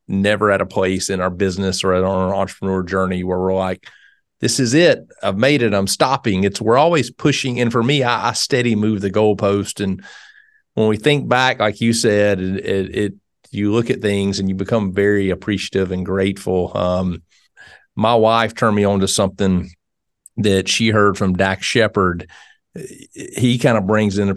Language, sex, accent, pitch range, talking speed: English, male, American, 95-130 Hz, 190 wpm